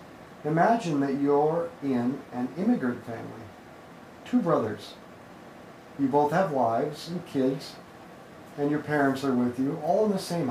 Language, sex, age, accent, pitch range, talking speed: English, male, 40-59, American, 130-175 Hz, 145 wpm